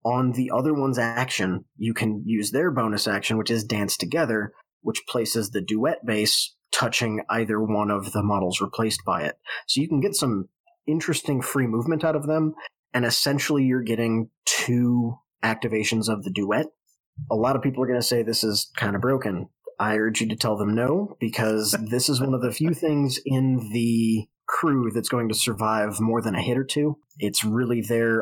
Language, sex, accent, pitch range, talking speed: English, male, American, 110-130 Hz, 200 wpm